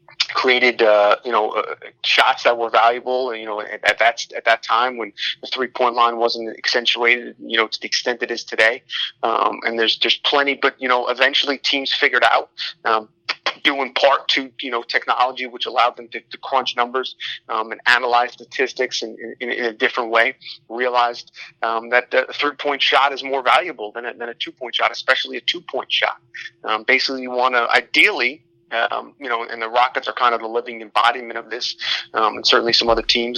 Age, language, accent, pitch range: 30-49, English, American, 115-130 Hz